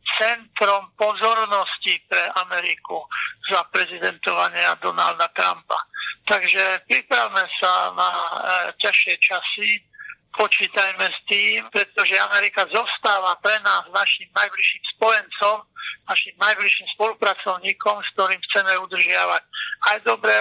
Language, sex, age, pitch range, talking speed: Slovak, male, 50-69, 190-225 Hz, 105 wpm